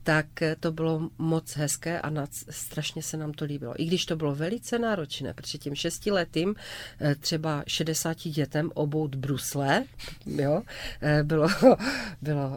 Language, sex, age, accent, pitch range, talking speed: Czech, female, 40-59, native, 140-165 Hz, 140 wpm